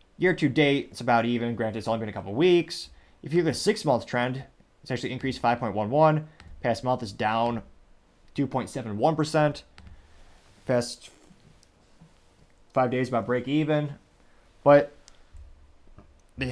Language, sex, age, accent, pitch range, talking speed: English, male, 20-39, American, 105-130 Hz, 130 wpm